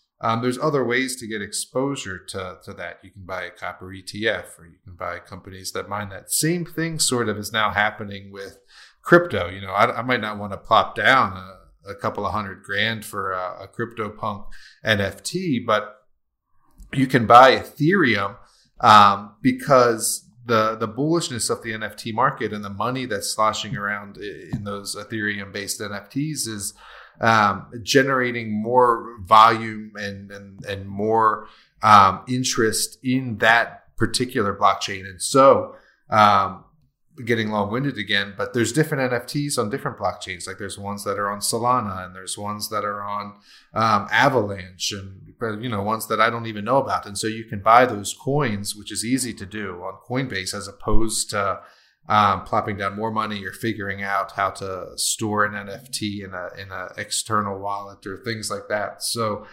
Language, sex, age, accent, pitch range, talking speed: English, male, 30-49, American, 100-115 Hz, 175 wpm